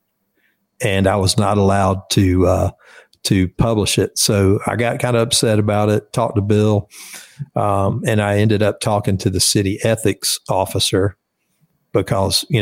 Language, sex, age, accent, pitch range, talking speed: English, male, 50-69, American, 100-115 Hz, 160 wpm